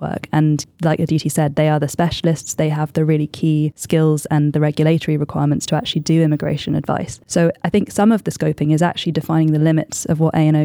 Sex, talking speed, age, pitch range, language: female, 220 wpm, 10-29, 150-170 Hz, English